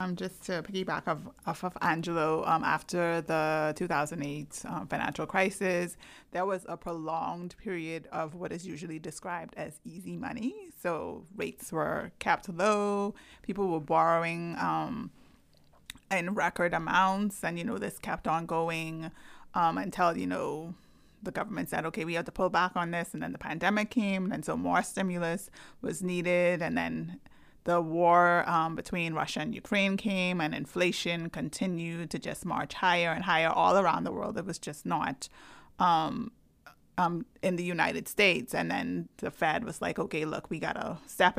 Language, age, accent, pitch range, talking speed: English, 30-49, American, 165-185 Hz, 170 wpm